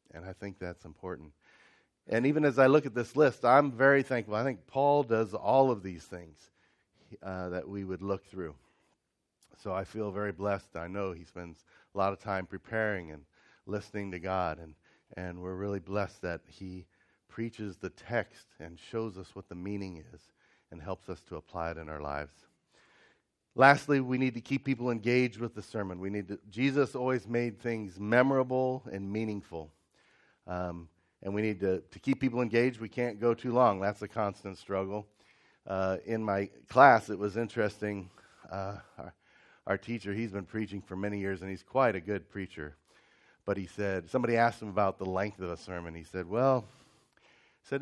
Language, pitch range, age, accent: English, 95-120 Hz, 40-59, American